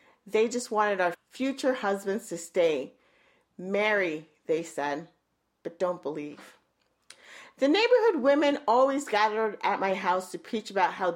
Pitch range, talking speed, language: 185-235 Hz, 140 wpm, English